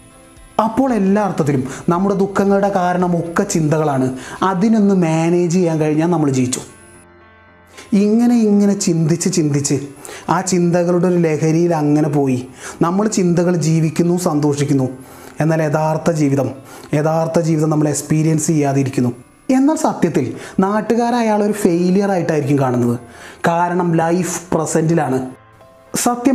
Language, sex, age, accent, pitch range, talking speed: Malayalam, male, 30-49, native, 145-190 Hz, 100 wpm